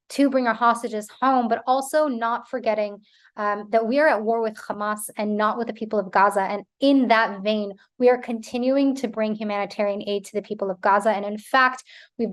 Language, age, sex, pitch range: English, 20-39, female, 210-245 Hz